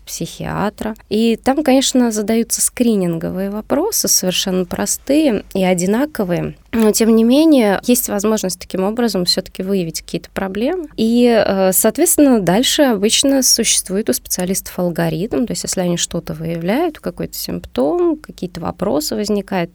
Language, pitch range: Russian, 175-235 Hz